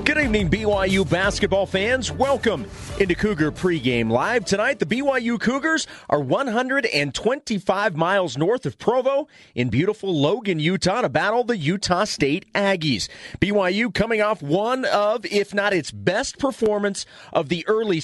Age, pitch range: 40-59, 165-215 Hz